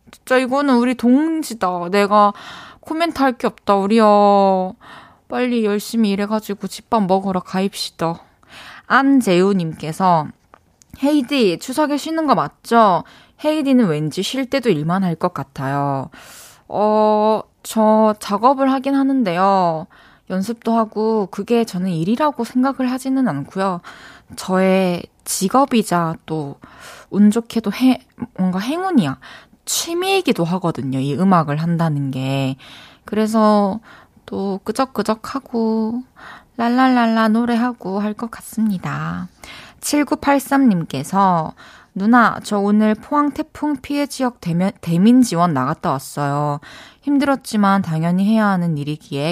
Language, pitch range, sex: Korean, 175-245 Hz, female